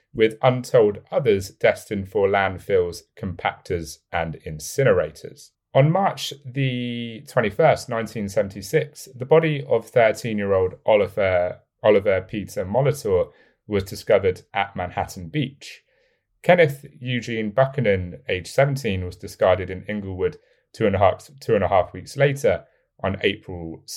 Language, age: English, 30-49